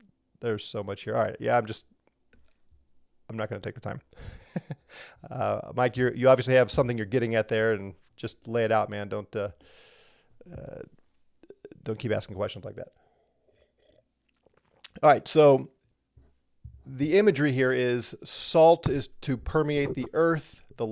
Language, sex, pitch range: English, male, 110-135 Hz